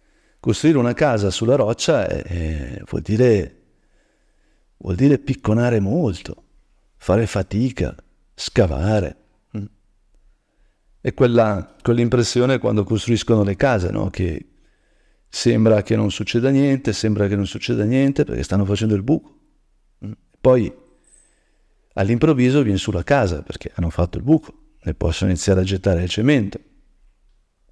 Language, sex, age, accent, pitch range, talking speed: Italian, male, 50-69, native, 95-120 Hz, 120 wpm